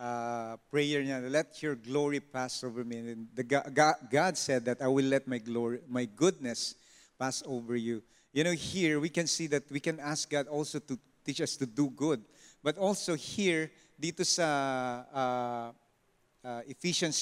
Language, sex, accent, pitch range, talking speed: English, male, Filipino, 130-160 Hz, 170 wpm